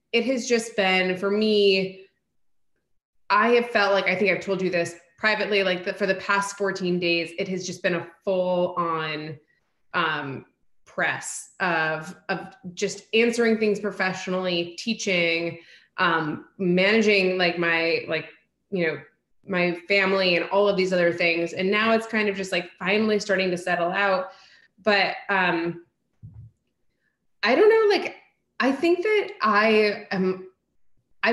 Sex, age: female, 20-39